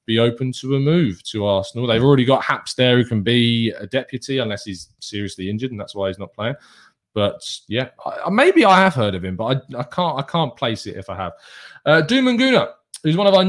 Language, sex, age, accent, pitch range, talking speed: English, male, 20-39, British, 110-145 Hz, 240 wpm